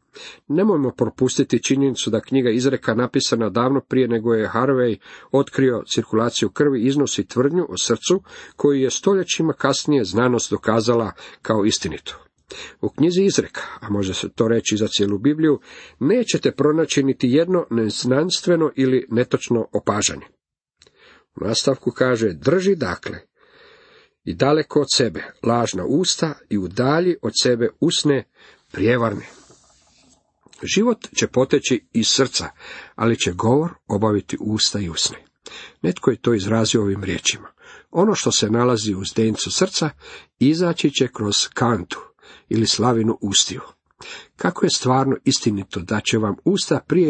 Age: 50-69